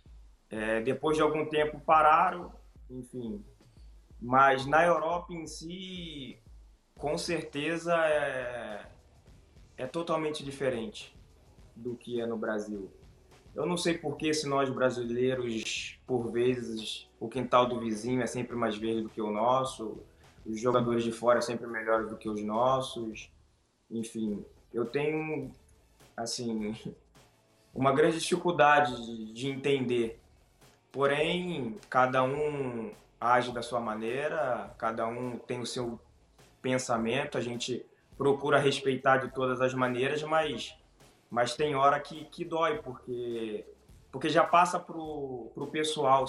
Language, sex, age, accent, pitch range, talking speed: Portuguese, male, 20-39, Brazilian, 115-150 Hz, 130 wpm